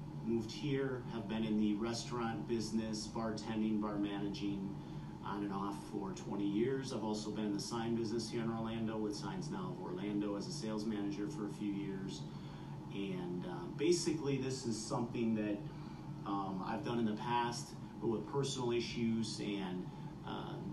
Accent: American